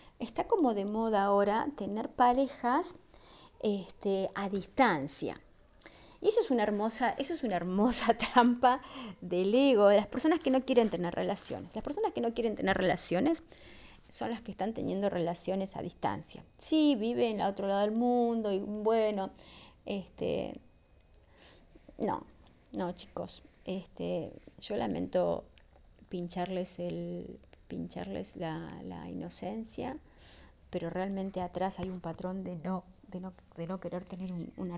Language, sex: Spanish, female